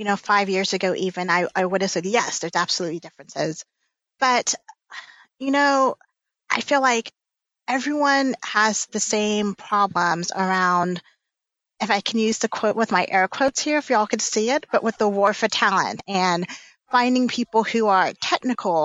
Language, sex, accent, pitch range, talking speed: English, female, American, 190-235 Hz, 175 wpm